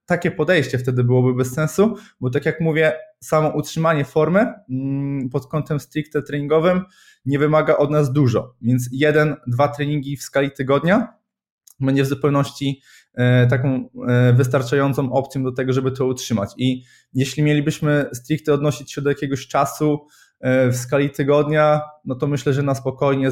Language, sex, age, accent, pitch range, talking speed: Polish, male, 20-39, native, 125-150 Hz, 150 wpm